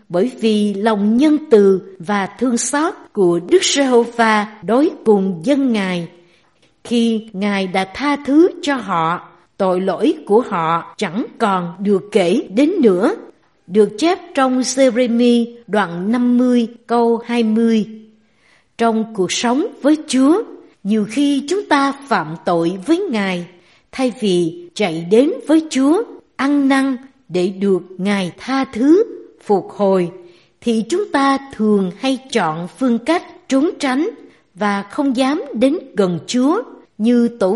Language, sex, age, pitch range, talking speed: Vietnamese, female, 60-79, 190-270 Hz, 135 wpm